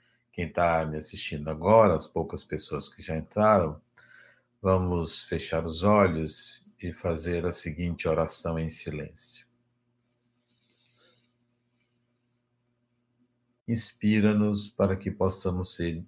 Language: Portuguese